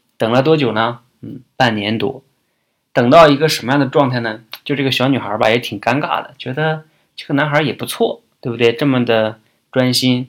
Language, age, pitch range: Chinese, 20-39, 115-145 Hz